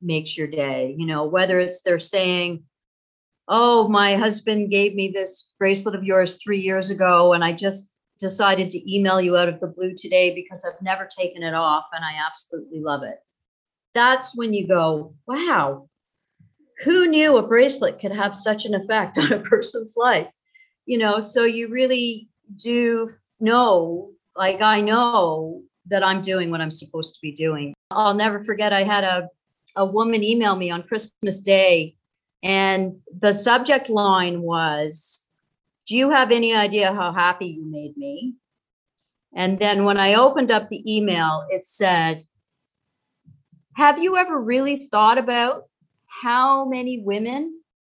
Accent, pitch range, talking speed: American, 170-225 Hz, 160 wpm